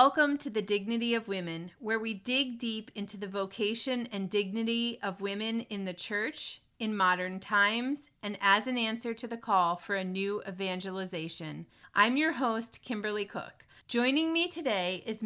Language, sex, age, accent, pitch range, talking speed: English, female, 30-49, American, 195-235 Hz, 170 wpm